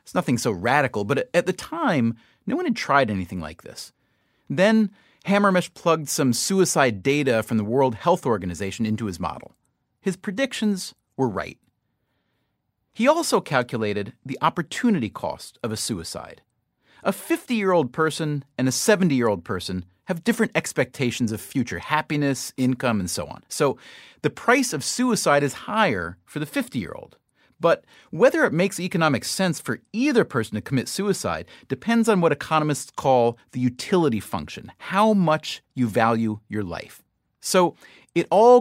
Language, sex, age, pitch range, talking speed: English, male, 30-49, 110-185 Hz, 150 wpm